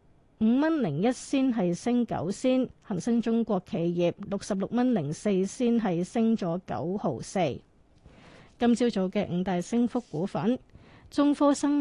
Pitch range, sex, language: 190-240 Hz, female, Chinese